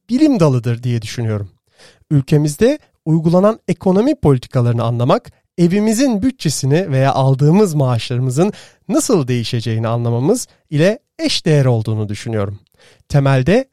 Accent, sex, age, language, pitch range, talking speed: native, male, 40-59, Turkish, 125-180 Hz, 100 wpm